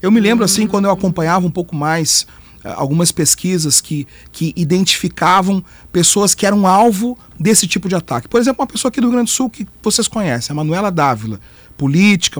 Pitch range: 160-215 Hz